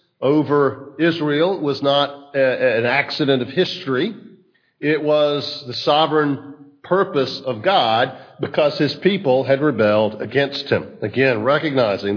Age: 50-69